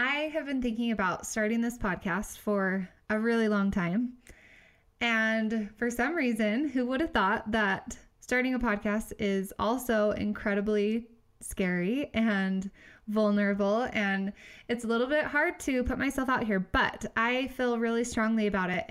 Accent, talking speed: American, 155 wpm